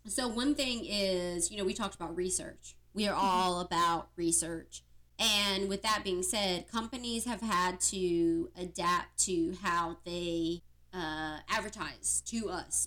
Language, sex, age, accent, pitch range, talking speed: English, female, 30-49, American, 165-200 Hz, 150 wpm